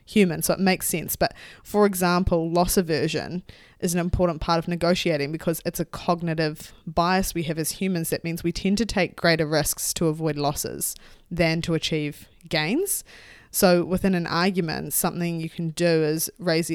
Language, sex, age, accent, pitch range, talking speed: English, female, 20-39, Australian, 155-180 Hz, 180 wpm